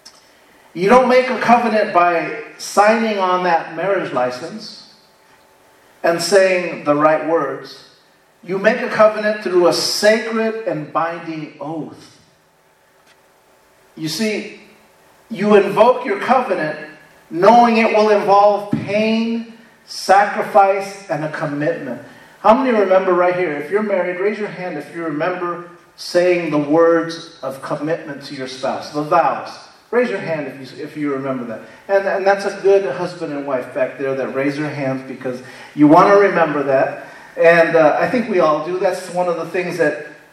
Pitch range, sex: 160-205 Hz, male